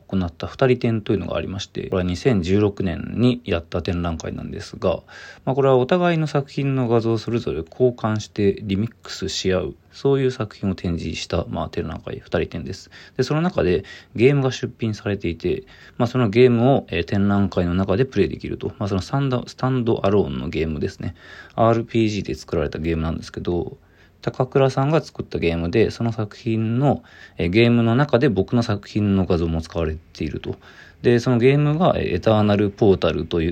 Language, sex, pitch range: Japanese, male, 95-125 Hz